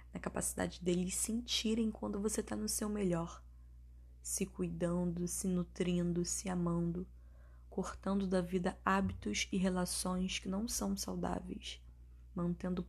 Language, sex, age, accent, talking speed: Portuguese, female, 10-29, Brazilian, 125 wpm